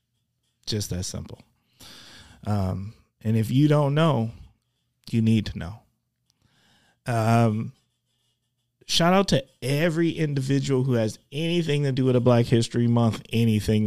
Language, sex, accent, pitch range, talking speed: English, male, American, 105-130 Hz, 130 wpm